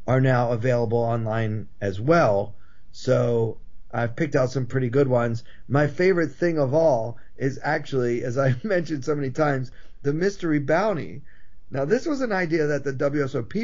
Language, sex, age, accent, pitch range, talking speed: English, male, 40-59, American, 110-140 Hz, 165 wpm